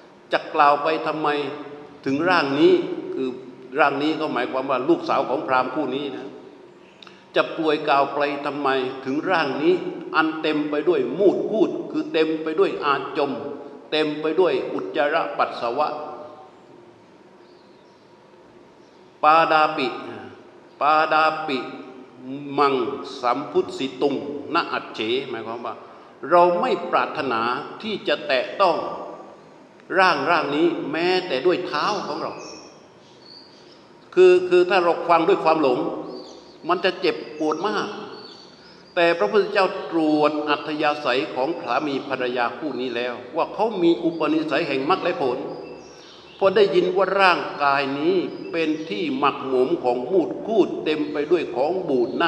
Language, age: Thai, 60-79